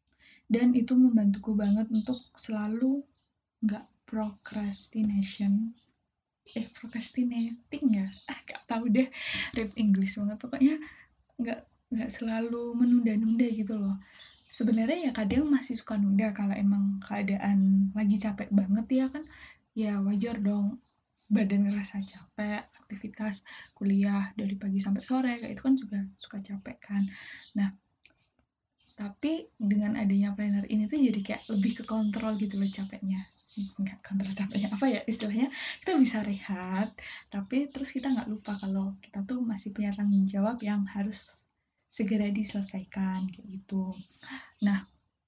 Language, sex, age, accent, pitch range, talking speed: Indonesian, female, 10-29, native, 200-230 Hz, 135 wpm